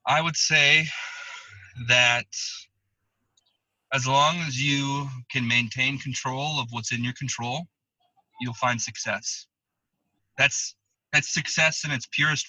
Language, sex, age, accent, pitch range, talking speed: English, male, 20-39, American, 120-145 Hz, 120 wpm